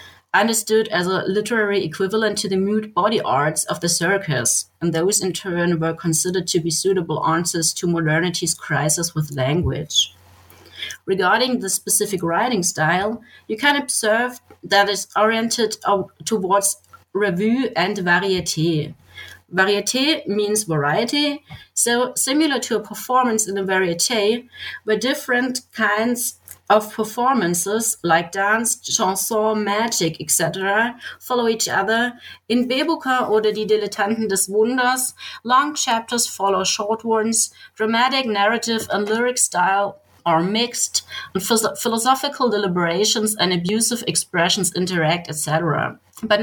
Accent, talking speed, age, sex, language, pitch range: German, 125 wpm, 30-49, female, English, 180-225 Hz